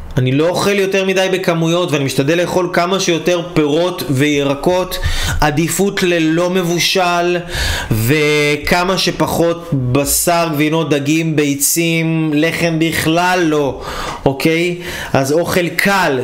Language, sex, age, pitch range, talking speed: Hebrew, male, 20-39, 150-180 Hz, 105 wpm